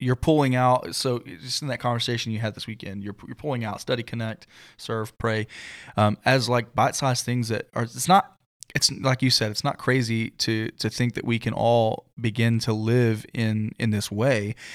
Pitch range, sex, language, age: 110-125 Hz, male, English, 20-39